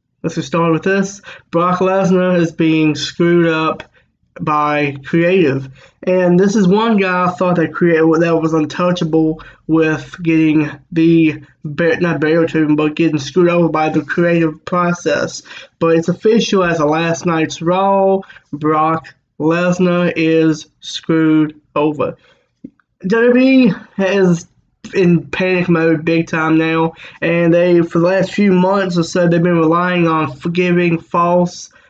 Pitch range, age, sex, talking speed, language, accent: 160-180 Hz, 20-39, male, 135 wpm, English, American